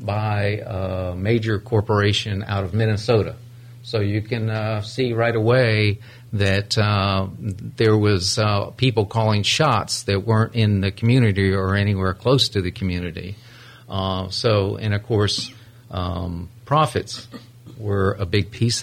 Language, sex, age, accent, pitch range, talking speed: English, male, 50-69, American, 100-120 Hz, 140 wpm